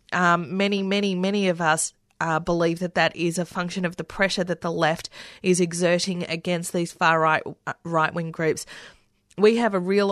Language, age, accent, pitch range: English, 30-49, Australian, 165-190 Hz